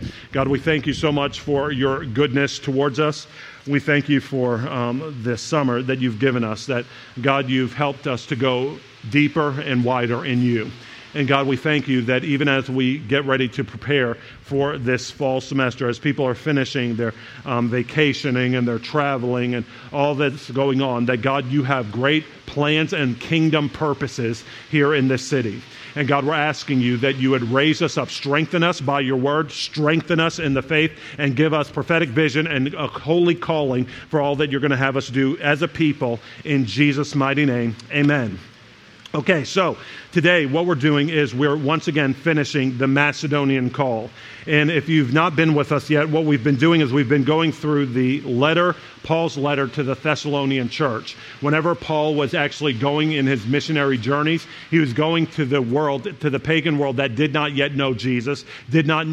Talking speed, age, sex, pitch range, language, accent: 195 wpm, 50-69, male, 130-150 Hz, English, American